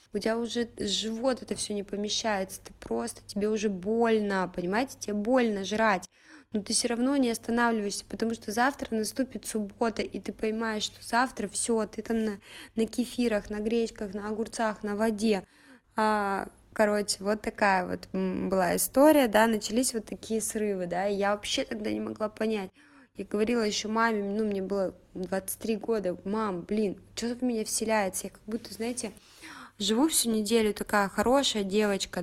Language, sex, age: Russian, female, 20-39